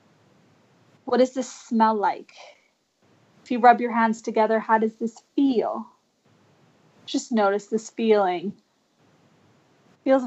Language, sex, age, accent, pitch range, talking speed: English, female, 20-39, American, 210-260 Hz, 115 wpm